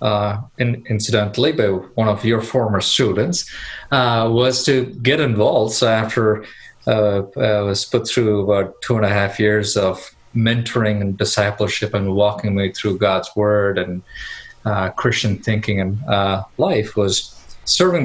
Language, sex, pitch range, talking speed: English, male, 95-115 Hz, 150 wpm